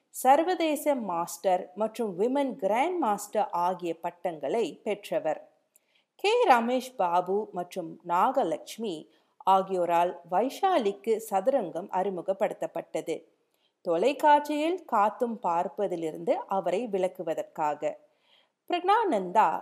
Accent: native